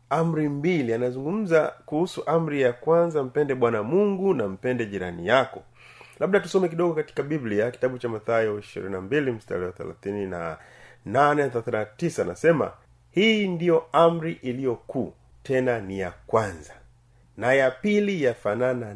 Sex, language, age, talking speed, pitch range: male, Swahili, 30-49, 125 wpm, 120-165 Hz